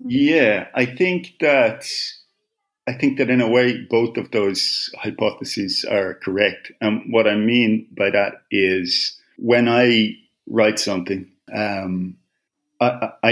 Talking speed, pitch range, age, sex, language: 130 wpm, 95-120 Hz, 40-59, male, English